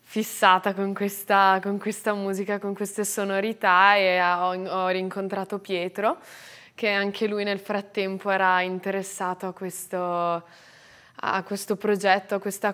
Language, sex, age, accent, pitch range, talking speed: Italian, female, 20-39, native, 180-195 Hz, 120 wpm